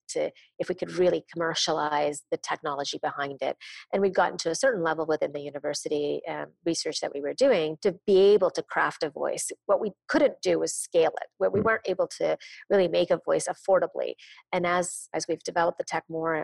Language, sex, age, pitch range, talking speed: English, female, 30-49, 165-210 Hz, 210 wpm